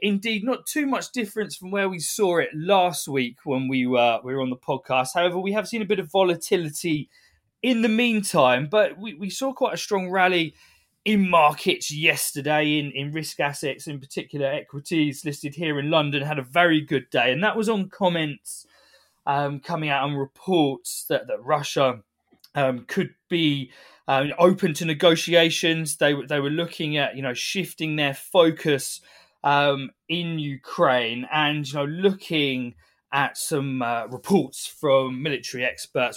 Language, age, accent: English, 20-39, British